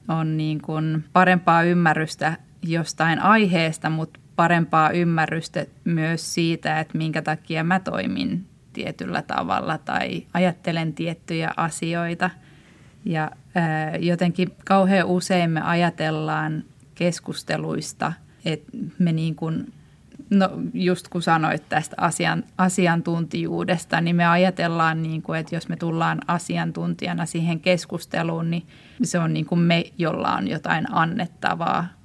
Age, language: 20-39, Finnish